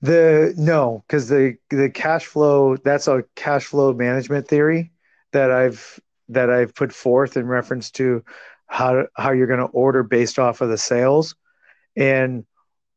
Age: 40-59